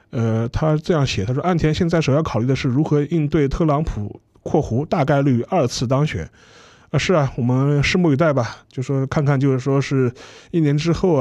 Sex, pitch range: male, 125-155 Hz